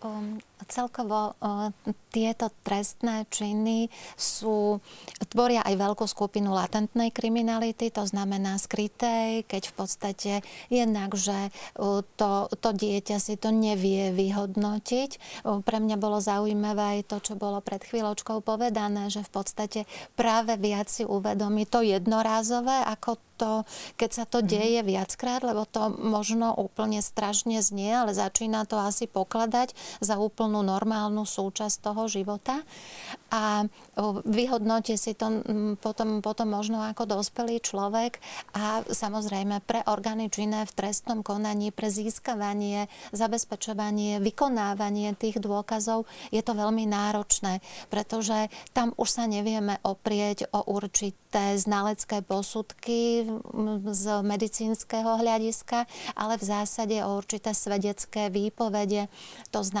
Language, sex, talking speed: Slovak, female, 120 wpm